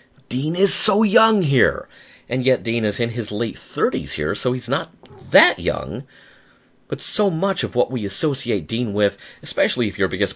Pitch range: 80-130 Hz